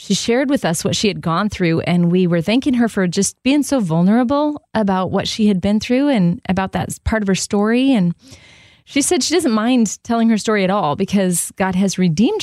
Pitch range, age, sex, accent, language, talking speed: 180-230 Hz, 30-49, female, American, English, 225 wpm